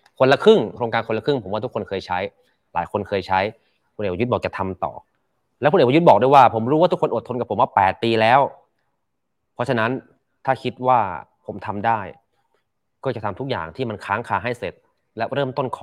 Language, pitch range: Thai, 90-120 Hz